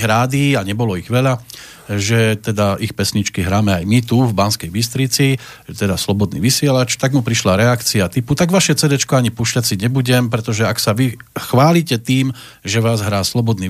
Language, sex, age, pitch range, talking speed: Slovak, male, 40-59, 115-160 Hz, 185 wpm